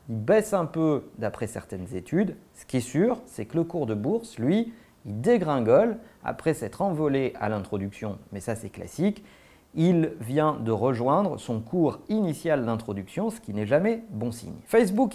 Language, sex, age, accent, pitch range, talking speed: French, male, 40-59, French, 115-190 Hz, 175 wpm